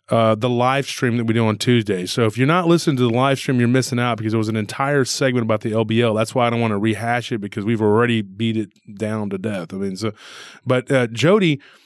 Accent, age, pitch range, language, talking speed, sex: American, 20-39, 115-140 Hz, English, 275 wpm, male